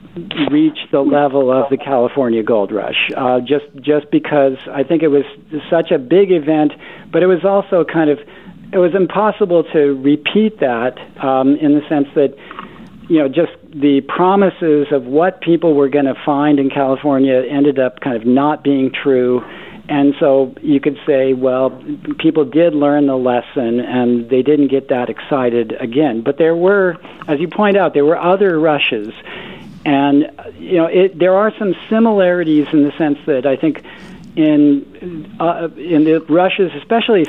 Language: English